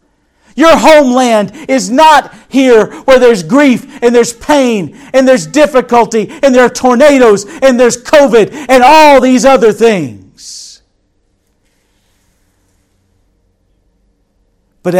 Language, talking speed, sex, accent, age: English, 110 wpm, male, American, 50-69